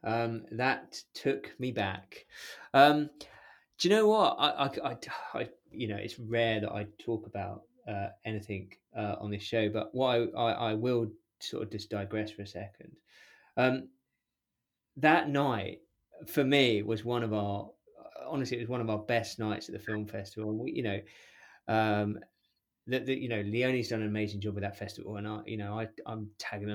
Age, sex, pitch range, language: 20-39, male, 105-135 Hz, English